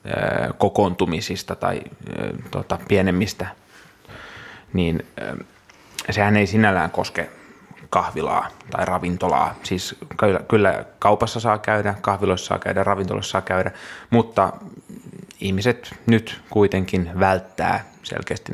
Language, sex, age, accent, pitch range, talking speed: Finnish, male, 30-49, native, 90-105 Hz, 95 wpm